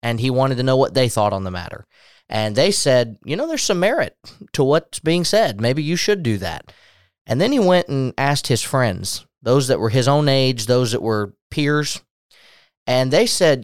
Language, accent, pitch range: English, American, 110-140 Hz